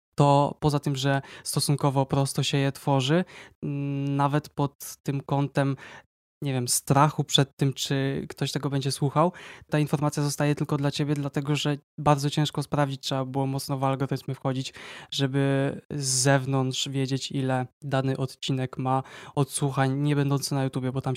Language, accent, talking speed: Polish, native, 155 wpm